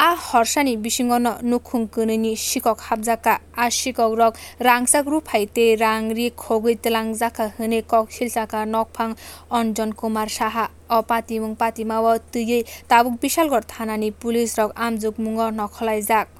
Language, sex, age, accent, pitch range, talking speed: English, female, 20-39, Indian, 225-245 Hz, 130 wpm